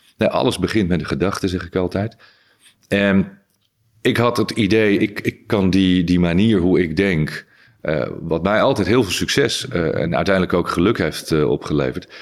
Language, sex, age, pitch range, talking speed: Dutch, male, 40-59, 80-100 Hz, 185 wpm